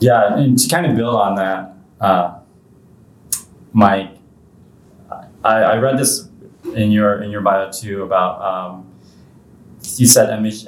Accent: American